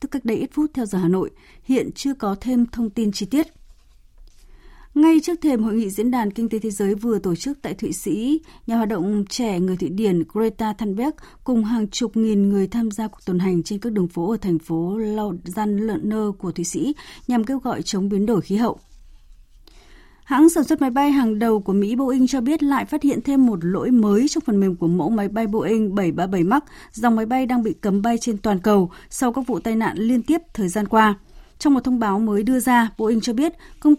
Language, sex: Vietnamese, female